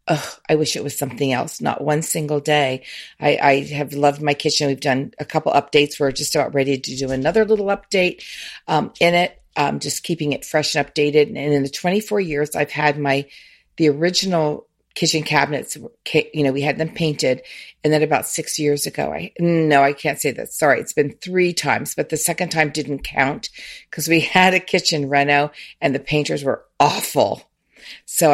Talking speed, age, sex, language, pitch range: 200 wpm, 40-59, female, English, 145-165 Hz